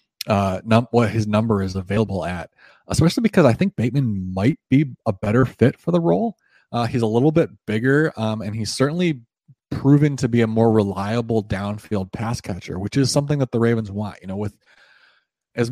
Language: English